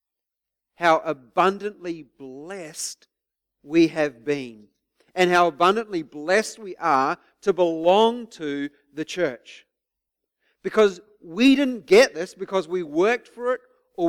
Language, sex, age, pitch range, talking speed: English, male, 50-69, 155-225 Hz, 120 wpm